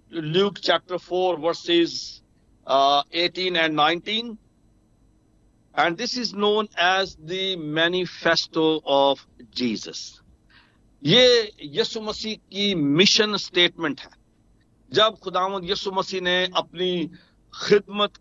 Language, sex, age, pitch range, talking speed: Hindi, male, 60-79, 165-205 Hz, 100 wpm